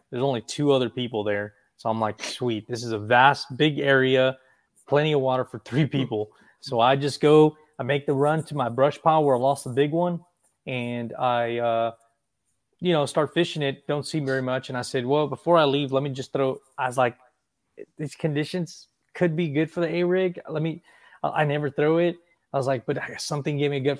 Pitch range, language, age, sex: 125-150 Hz, English, 20-39, male